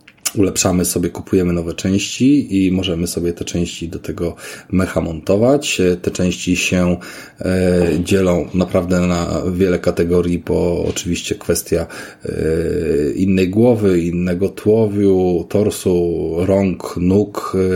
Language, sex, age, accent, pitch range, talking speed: Polish, male, 30-49, native, 85-100 Hz, 110 wpm